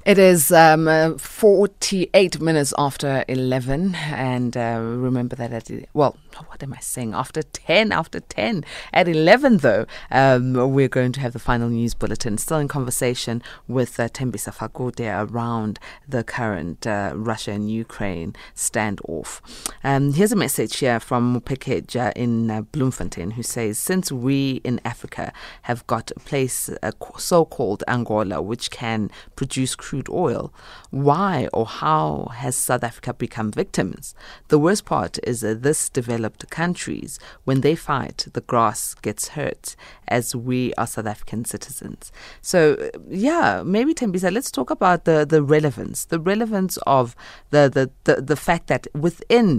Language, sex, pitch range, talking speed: English, female, 115-155 Hz, 150 wpm